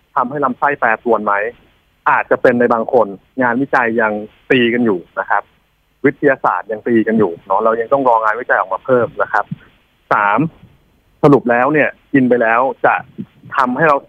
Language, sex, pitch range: Thai, male, 110-150 Hz